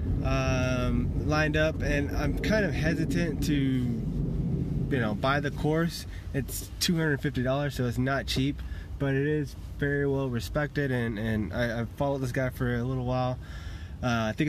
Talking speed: 165 wpm